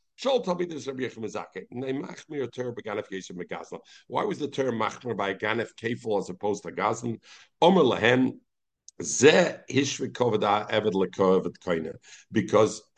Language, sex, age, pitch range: English, male, 60-79, 120-160 Hz